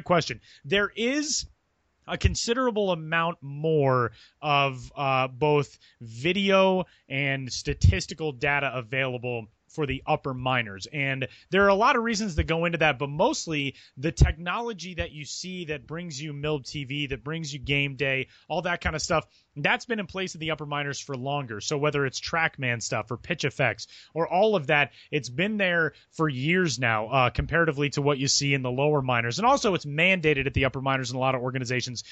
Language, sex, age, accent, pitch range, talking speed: English, male, 30-49, American, 130-165 Hz, 195 wpm